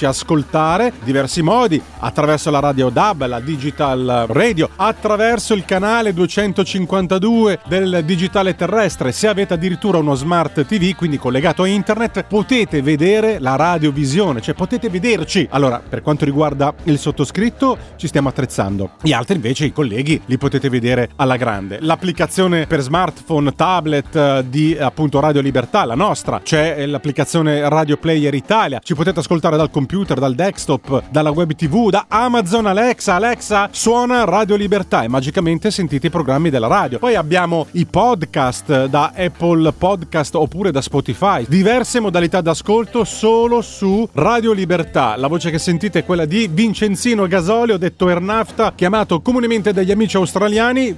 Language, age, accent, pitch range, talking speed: Italian, 30-49, native, 145-205 Hz, 150 wpm